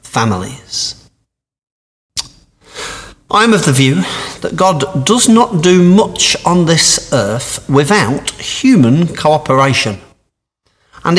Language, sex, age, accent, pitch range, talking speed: English, male, 50-69, British, 125-155 Hz, 100 wpm